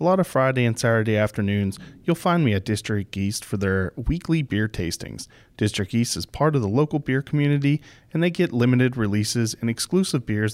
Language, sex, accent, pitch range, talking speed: English, male, American, 105-130 Hz, 200 wpm